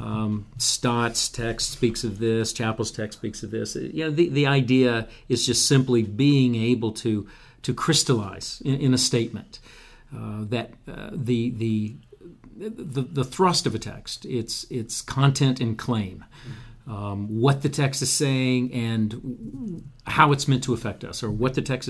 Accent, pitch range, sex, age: American, 115-140 Hz, male, 50-69